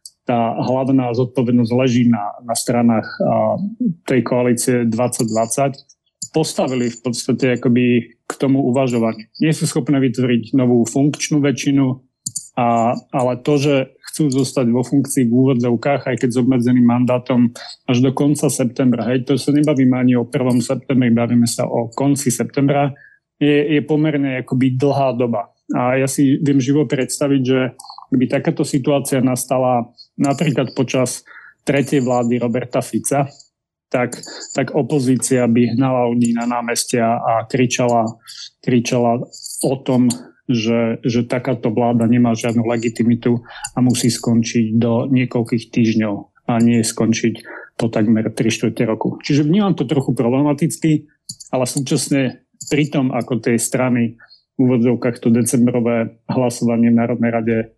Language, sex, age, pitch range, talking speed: Slovak, male, 30-49, 120-140 Hz, 135 wpm